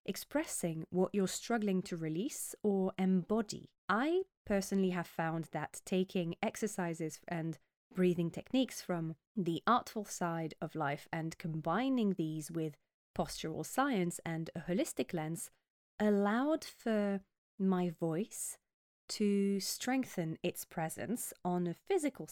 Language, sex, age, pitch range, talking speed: English, female, 20-39, 170-230 Hz, 120 wpm